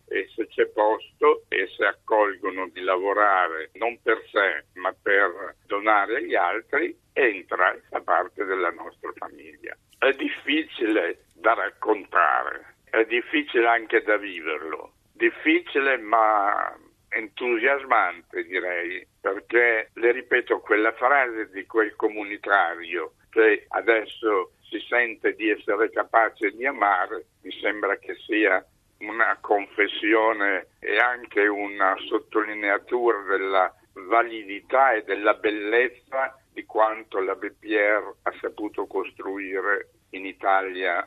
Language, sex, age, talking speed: Italian, male, 60-79, 115 wpm